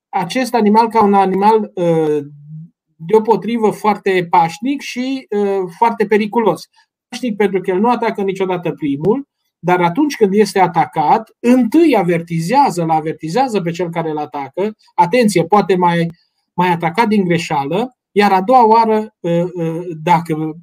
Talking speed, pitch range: 130 wpm, 165-215 Hz